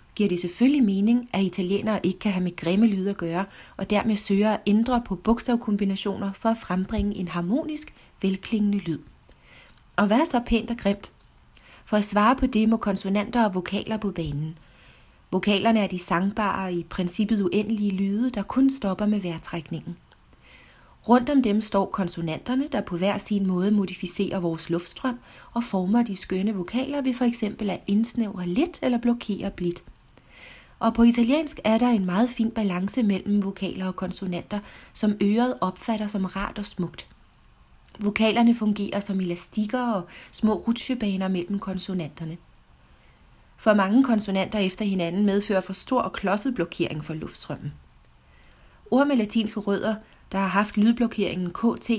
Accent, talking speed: native, 155 wpm